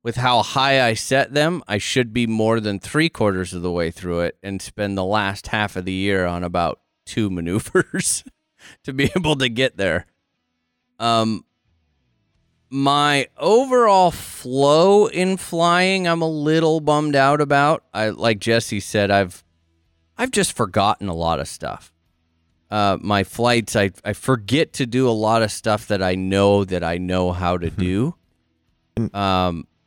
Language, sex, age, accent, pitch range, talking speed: English, male, 30-49, American, 90-120 Hz, 165 wpm